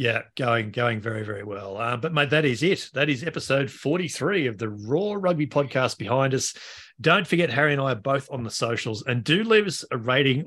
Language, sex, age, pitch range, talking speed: English, male, 40-59, 115-140 Hz, 225 wpm